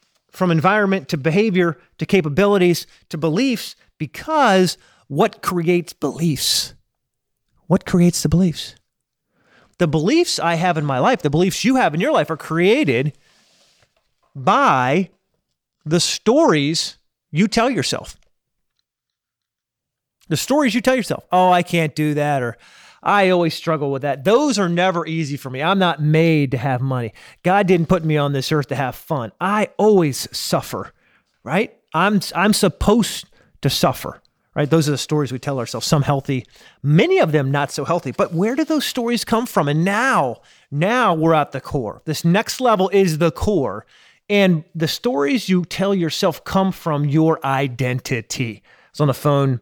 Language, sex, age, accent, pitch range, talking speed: English, male, 30-49, American, 145-195 Hz, 165 wpm